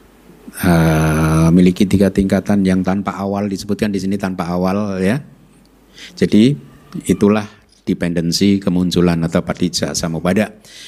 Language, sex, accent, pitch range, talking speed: Indonesian, male, native, 95-135 Hz, 110 wpm